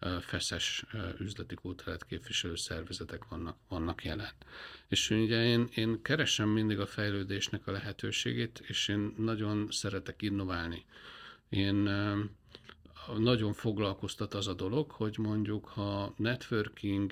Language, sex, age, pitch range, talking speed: Hungarian, male, 50-69, 95-115 Hz, 110 wpm